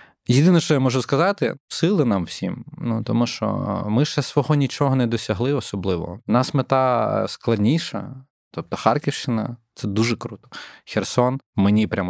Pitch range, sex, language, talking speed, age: 95-125 Hz, male, Ukrainian, 155 wpm, 20-39